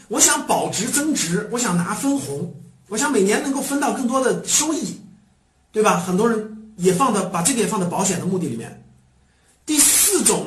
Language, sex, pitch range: Chinese, male, 170-270 Hz